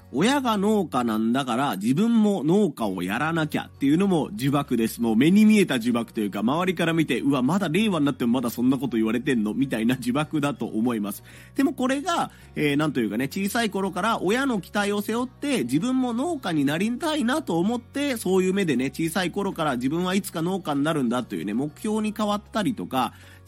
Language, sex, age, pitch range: Japanese, male, 30-49, 130-210 Hz